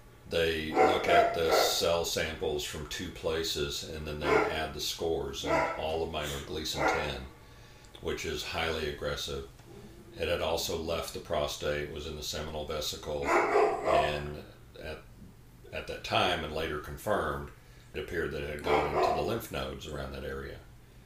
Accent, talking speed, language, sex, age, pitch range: American, 165 wpm, English, male, 50-69, 75-85 Hz